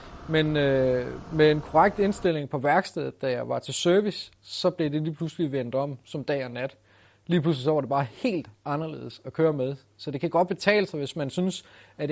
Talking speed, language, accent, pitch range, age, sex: 225 wpm, Danish, native, 125-160 Hz, 30-49, male